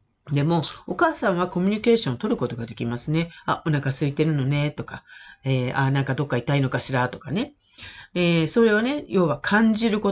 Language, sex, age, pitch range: Japanese, female, 40-59, 155-240 Hz